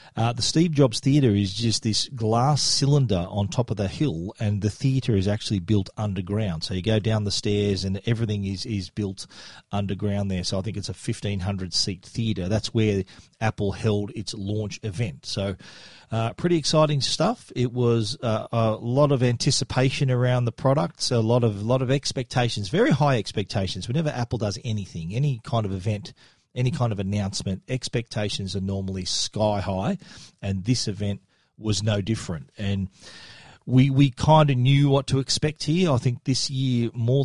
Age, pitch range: 40-59, 100-125 Hz